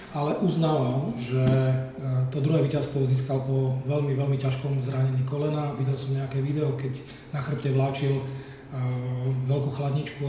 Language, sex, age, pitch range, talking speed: Czech, male, 30-49, 135-145 Hz, 135 wpm